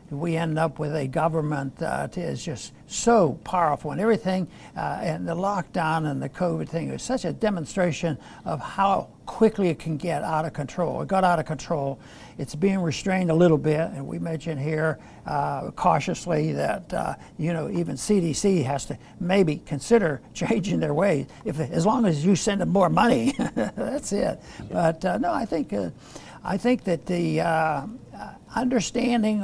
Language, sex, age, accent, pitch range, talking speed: English, male, 60-79, American, 160-210 Hz, 175 wpm